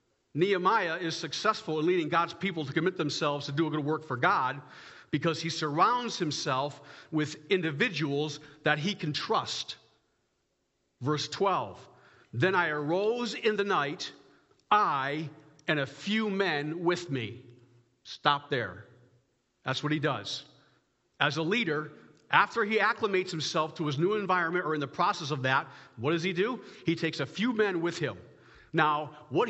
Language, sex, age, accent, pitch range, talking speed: English, male, 50-69, American, 150-200 Hz, 160 wpm